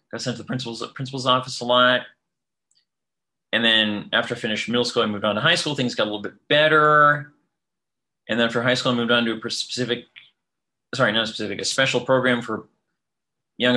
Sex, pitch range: male, 110-130 Hz